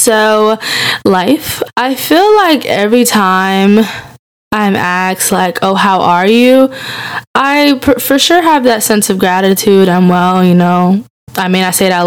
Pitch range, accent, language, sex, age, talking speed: 185-235 Hz, American, English, female, 10-29, 160 wpm